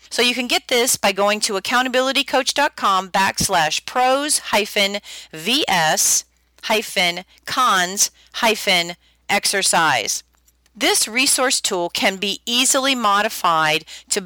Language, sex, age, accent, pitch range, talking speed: English, female, 40-59, American, 180-235 Hz, 80 wpm